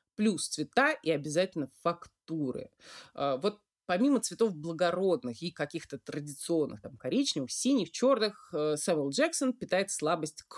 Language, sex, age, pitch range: Russian, female, 30-49, 155-240 Hz